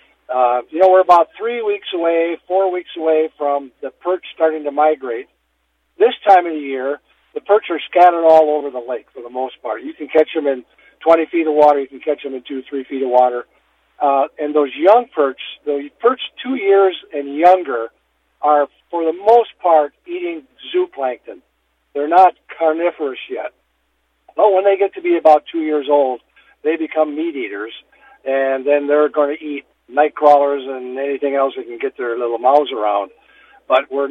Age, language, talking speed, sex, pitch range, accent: 50-69, English, 190 wpm, male, 135-180 Hz, American